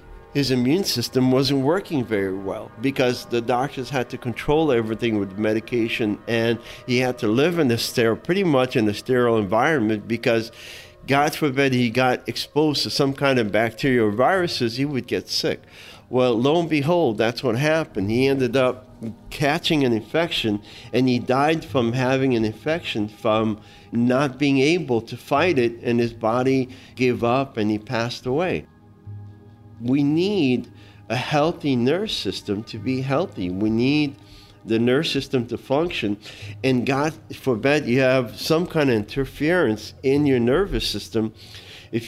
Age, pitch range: 50-69, 110-135 Hz